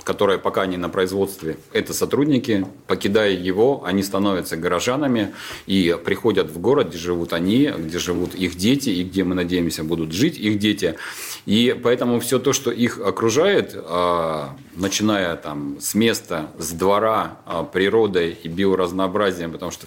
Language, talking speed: Russian, 150 wpm